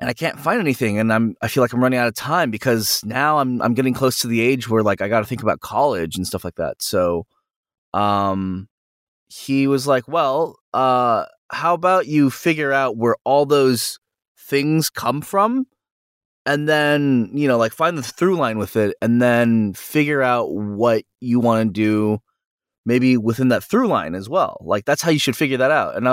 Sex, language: male, English